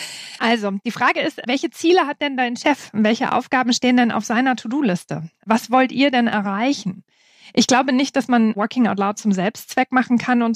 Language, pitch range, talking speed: German, 210-255 Hz, 200 wpm